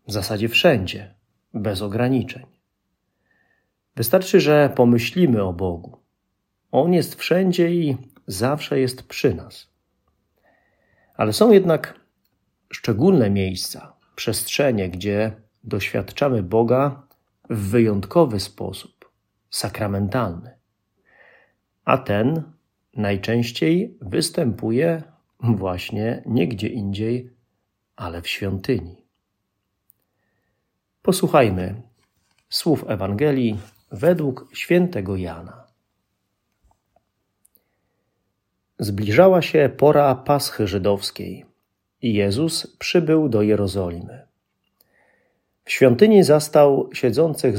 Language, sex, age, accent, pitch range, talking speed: Polish, male, 40-59, native, 100-145 Hz, 75 wpm